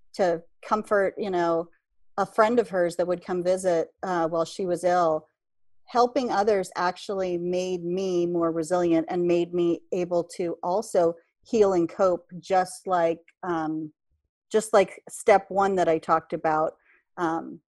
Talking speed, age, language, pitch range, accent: 150 wpm, 40-59, English, 170-205 Hz, American